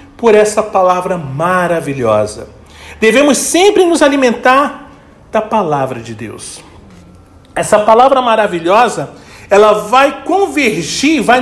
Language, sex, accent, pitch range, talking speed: Portuguese, male, Brazilian, 210-315 Hz, 100 wpm